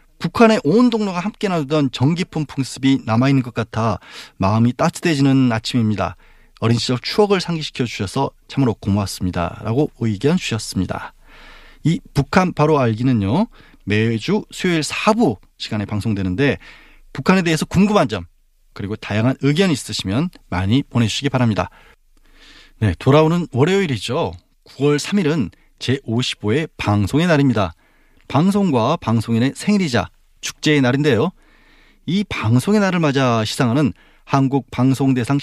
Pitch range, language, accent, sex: 115-165 Hz, Korean, native, male